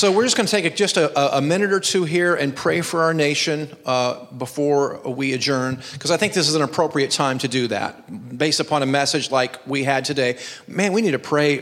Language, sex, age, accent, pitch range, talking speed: English, male, 40-59, American, 145-195 Hz, 240 wpm